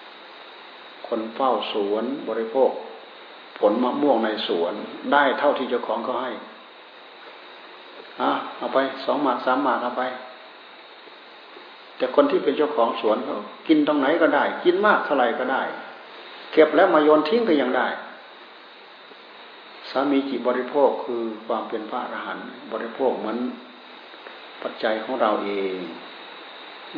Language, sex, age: Thai, male, 60-79